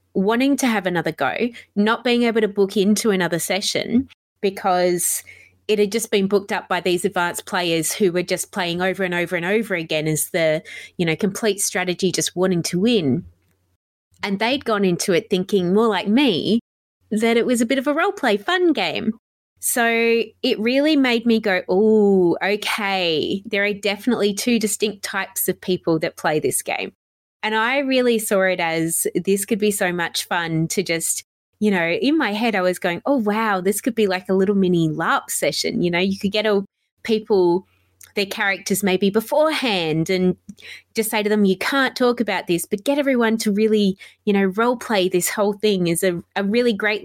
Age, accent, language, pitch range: 20-39, Australian, English, 185-230 Hz